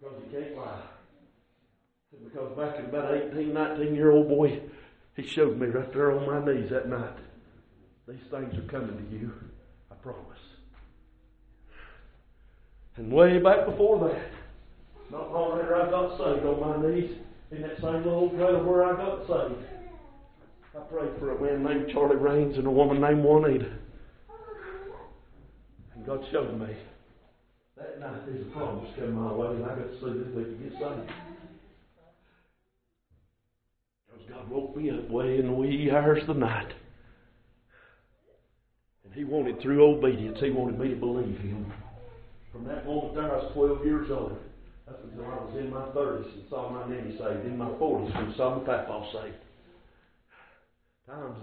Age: 60-79